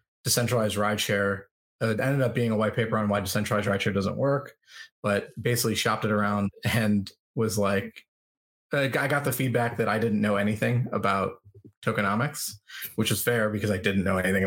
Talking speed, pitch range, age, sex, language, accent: 175 wpm, 100-120 Hz, 20-39, male, English, American